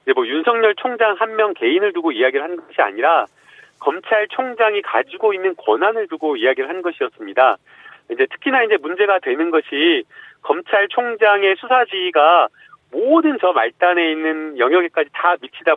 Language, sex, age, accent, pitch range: Korean, male, 40-59, native, 170-270 Hz